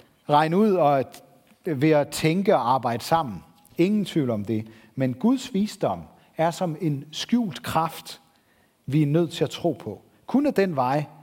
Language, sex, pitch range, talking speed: Danish, male, 125-180 Hz, 170 wpm